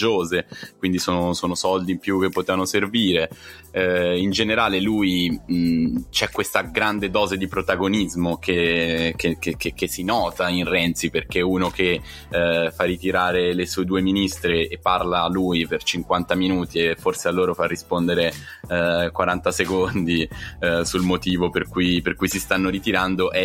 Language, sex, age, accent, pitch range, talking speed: Italian, male, 10-29, native, 85-95 Hz, 165 wpm